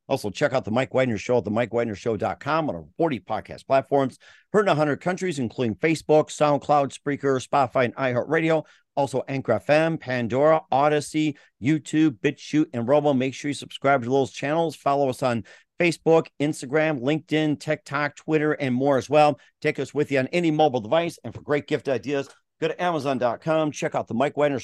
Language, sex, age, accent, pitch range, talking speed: English, male, 50-69, American, 125-150 Hz, 180 wpm